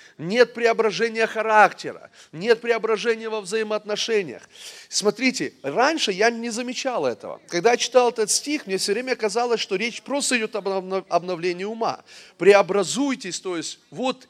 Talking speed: 140 wpm